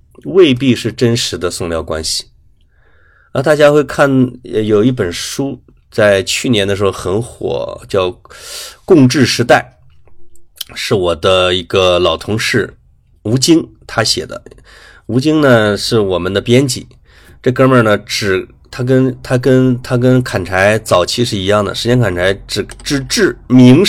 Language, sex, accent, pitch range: Chinese, male, native, 105-135 Hz